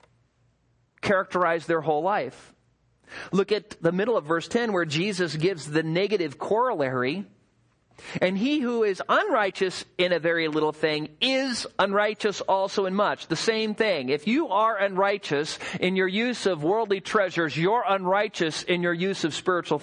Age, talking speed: 40-59, 155 wpm